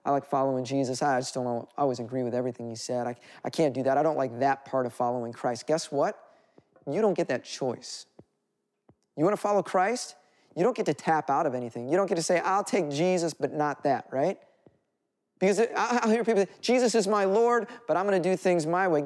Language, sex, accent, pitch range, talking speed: English, male, American, 160-240 Hz, 235 wpm